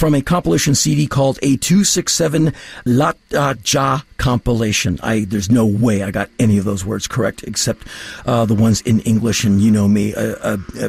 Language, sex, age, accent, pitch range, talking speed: English, male, 50-69, American, 105-135 Hz, 185 wpm